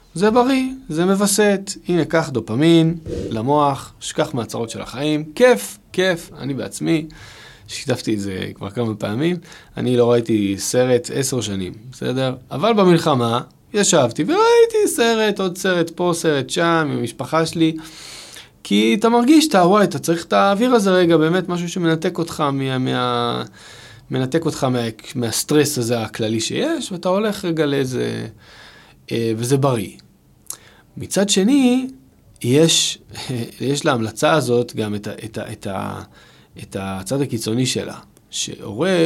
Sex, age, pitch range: male, 20-39, 115-165 Hz